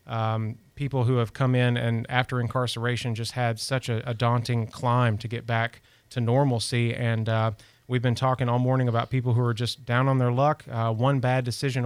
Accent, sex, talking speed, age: American, male, 205 wpm, 30-49